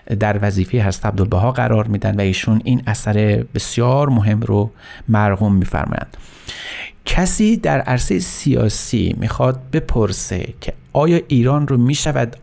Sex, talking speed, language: male, 130 wpm, Persian